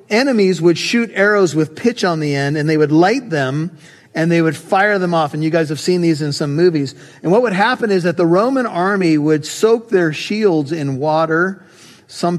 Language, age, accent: English, 40-59, American